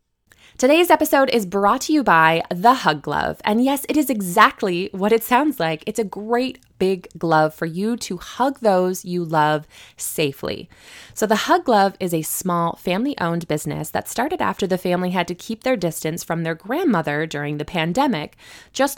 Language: English